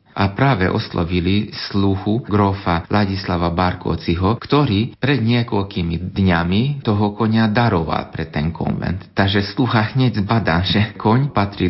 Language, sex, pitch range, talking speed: Slovak, male, 85-105 Hz, 125 wpm